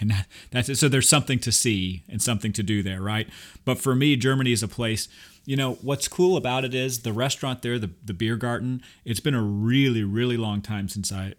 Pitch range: 100-125 Hz